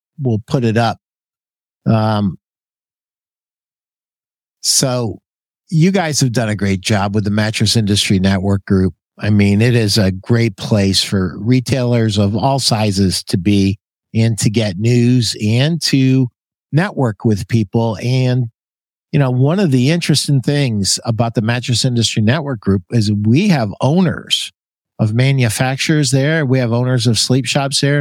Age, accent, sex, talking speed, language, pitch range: 50-69, American, male, 150 wpm, English, 110-140 Hz